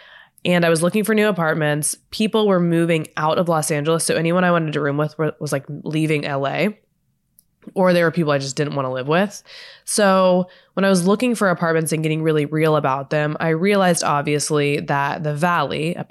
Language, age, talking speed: English, 20-39, 210 wpm